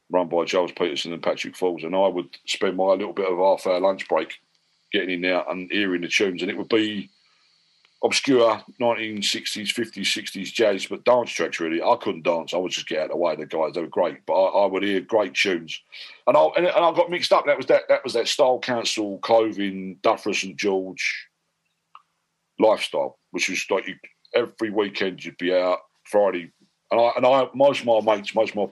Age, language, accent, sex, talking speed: 50-69, English, British, male, 215 wpm